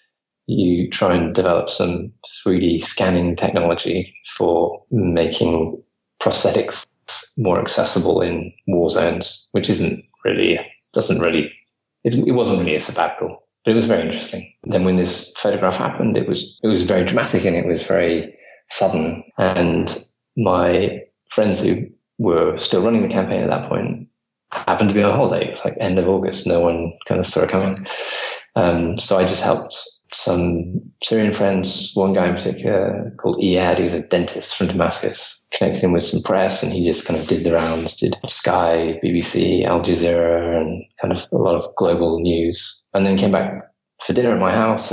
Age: 20-39